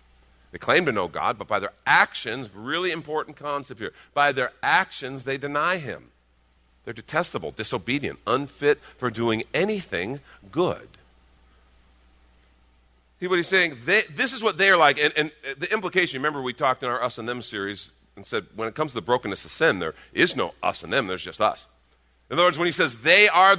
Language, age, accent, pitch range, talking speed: English, 50-69, American, 115-185 Hz, 195 wpm